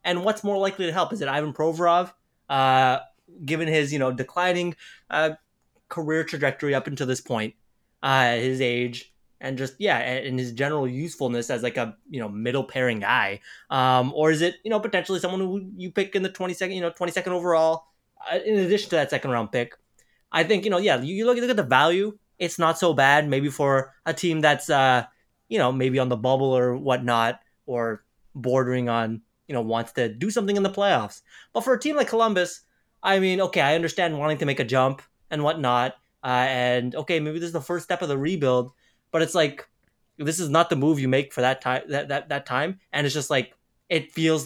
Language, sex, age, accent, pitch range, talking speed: English, male, 20-39, American, 130-175 Hz, 220 wpm